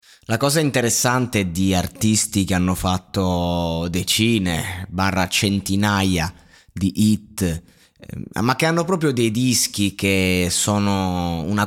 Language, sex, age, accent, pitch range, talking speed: Italian, male, 20-39, native, 95-120 Hz, 115 wpm